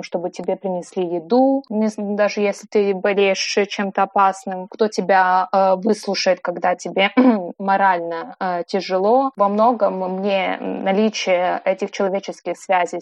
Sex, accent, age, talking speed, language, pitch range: female, native, 20-39, 110 wpm, Russian, 180-205 Hz